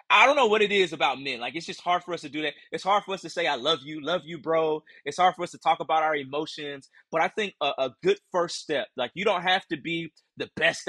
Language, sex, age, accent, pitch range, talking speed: English, male, 30-49, American, 130-170 Hz, 300 wpm